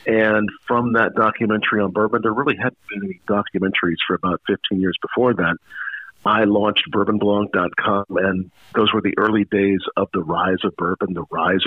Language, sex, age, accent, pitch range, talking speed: English, male, 50-69, American, 100-120 Hz, 175 wpm